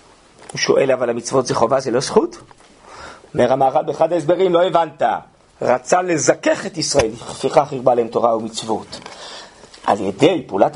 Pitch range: 160-235 Hz